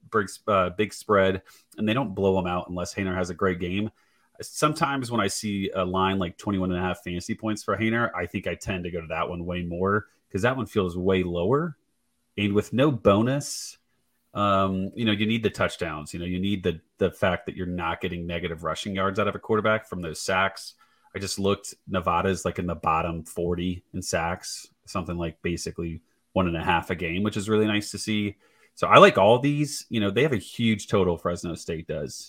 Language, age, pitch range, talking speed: English, 30-49, 90-105 Hz, 225 wpm